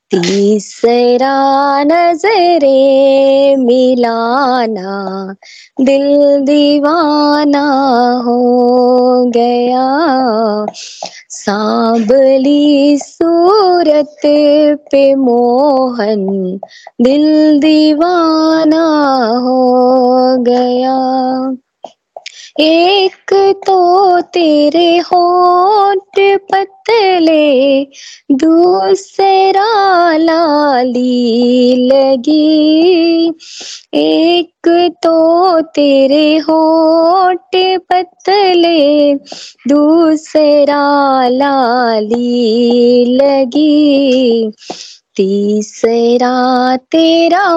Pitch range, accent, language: 250-320 Hz, native, Hindi